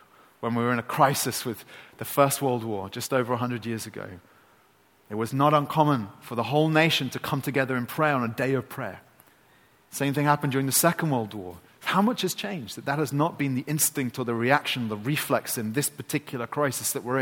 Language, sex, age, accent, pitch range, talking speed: English, male, 30-49, British, 120-150 Hz, 225 wpm